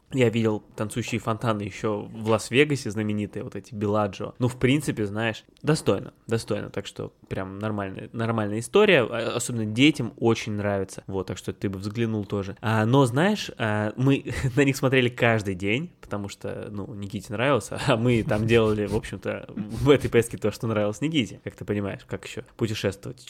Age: 20-39